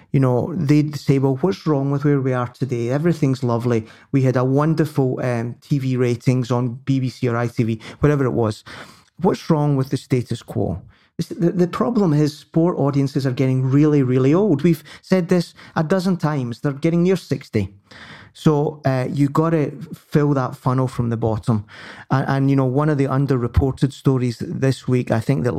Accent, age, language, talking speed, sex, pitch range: British, 30-49, English, 190 wpm, male, 120-145 Hz